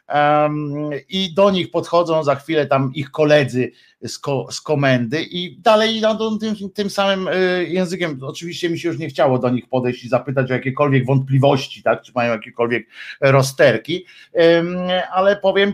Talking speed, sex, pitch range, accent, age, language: 155 wpm, male, 145-185 Hz, native, 50-69, Polish